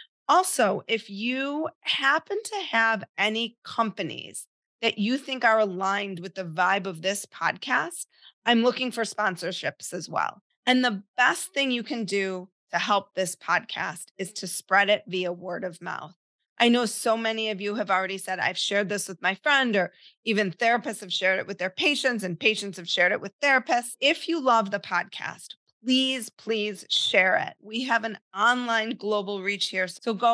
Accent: American